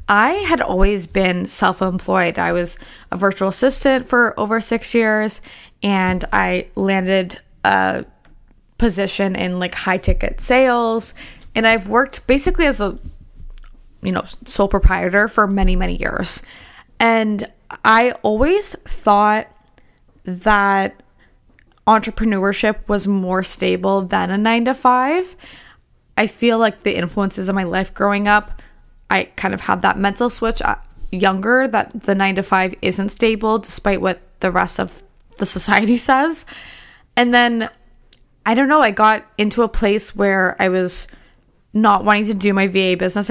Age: 20-39